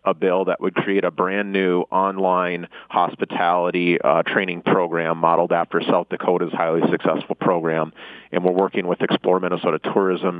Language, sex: English, male